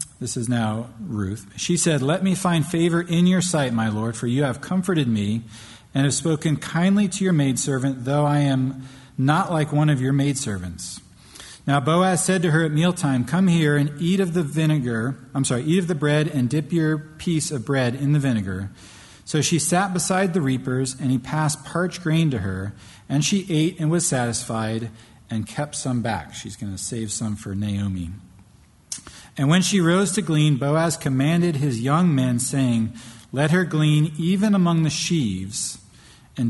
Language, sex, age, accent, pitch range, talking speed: English, male, 40-59, American, 115-155 Hz, 190 wpm